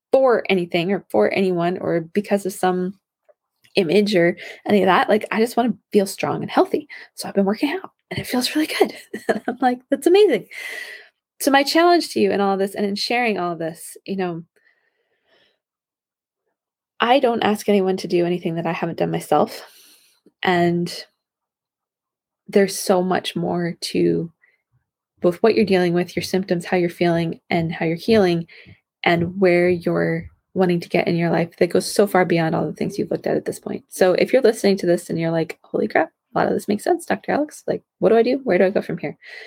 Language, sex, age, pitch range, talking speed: English, female, 20-39, 175-225 Hz, 210 wpm